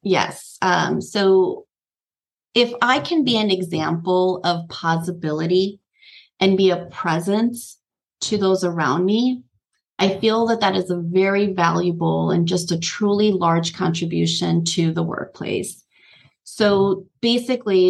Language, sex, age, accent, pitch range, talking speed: English, female, 30-49, American, 180-215 Hz, 125 wpm